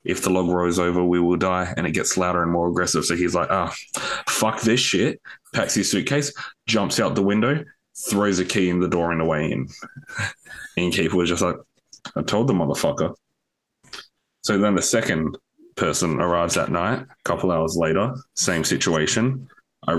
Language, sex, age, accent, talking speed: English, male, 20-39, Australian, 190 wpm